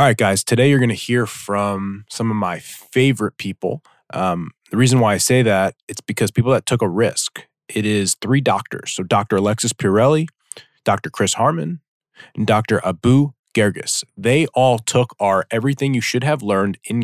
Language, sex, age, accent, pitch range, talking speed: English, male, 20-39, American, 100-125 Hz, 185 wpm